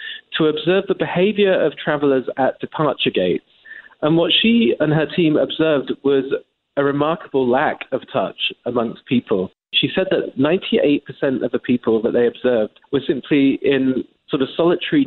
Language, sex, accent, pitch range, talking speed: English, male, British, 125-165 Hz, 160 wpm